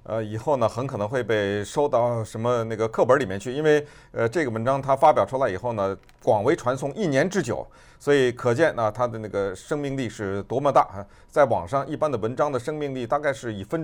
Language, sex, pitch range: Chinese, male, 120-190 Hz